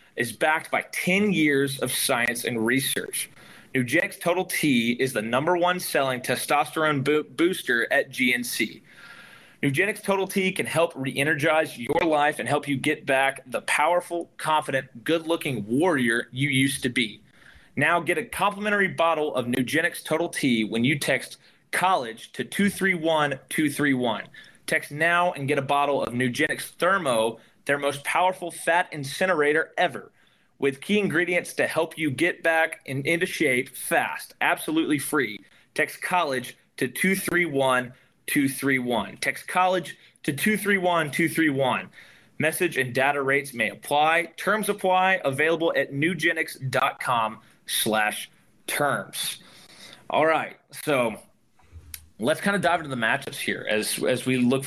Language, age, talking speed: English, 30-49, 135 wpm